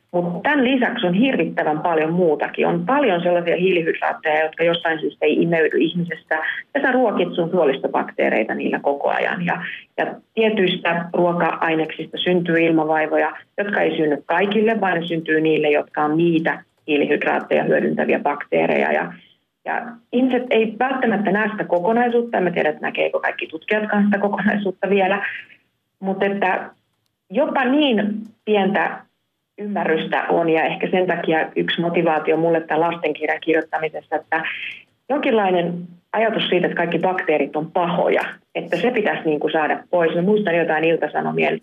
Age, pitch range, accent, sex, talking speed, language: 30-49, 160-205 Hz, native, female, 145 wpm, Finnish